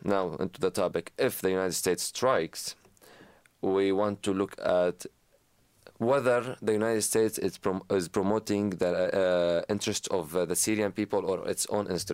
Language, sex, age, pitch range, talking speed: English, male, 30-49, 90-105 Hz, 160 wpm